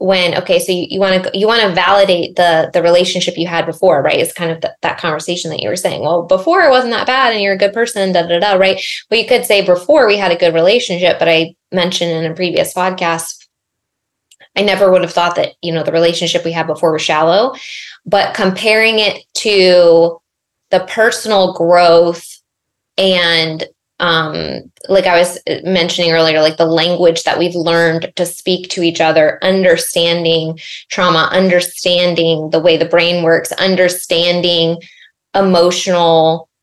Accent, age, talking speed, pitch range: American, 20-39, 180 wpm, 165-190 Hz